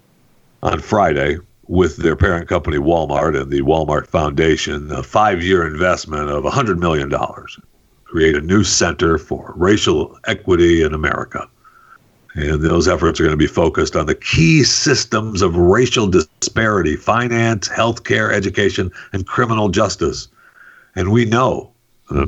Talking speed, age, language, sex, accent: 135 wpm, 60-79, English, male, American